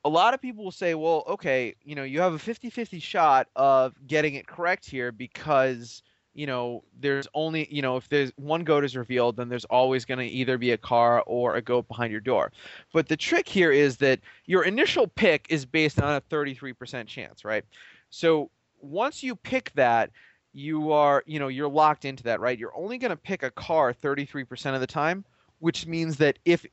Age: 20-39